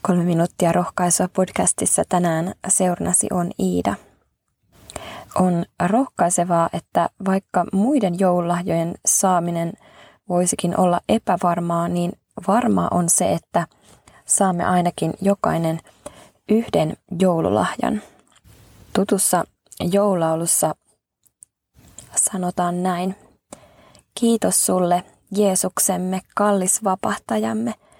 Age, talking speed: 20-39, 75 wpm